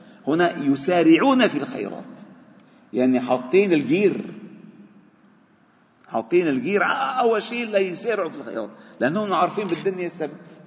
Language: Arabic